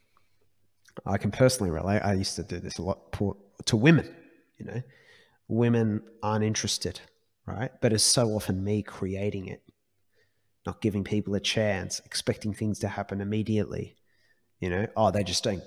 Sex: male